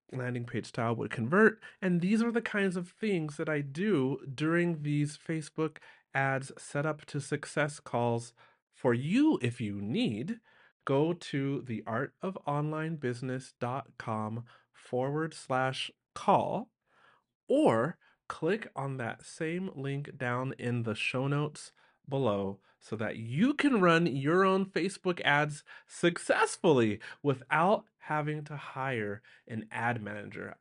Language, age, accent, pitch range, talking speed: English, 30-49, American, 120-160 Hz, 125 wpm